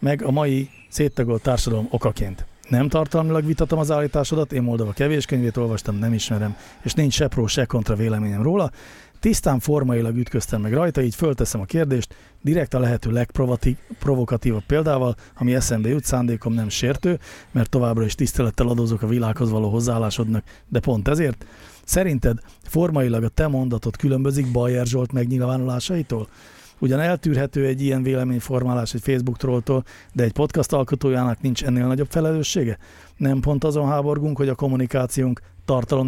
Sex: male